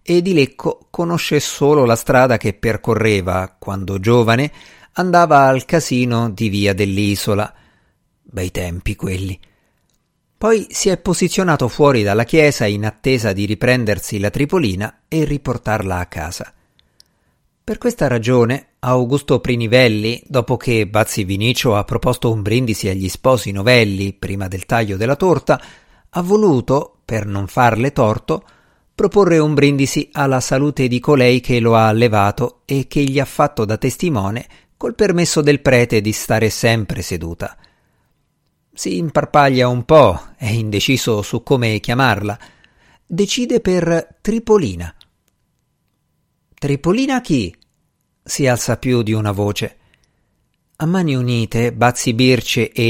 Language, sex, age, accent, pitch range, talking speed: Italian, male, 50-69, native, 110-145 Hz, 130 wpm